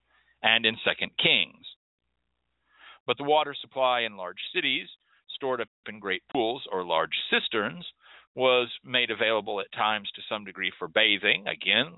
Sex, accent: male, American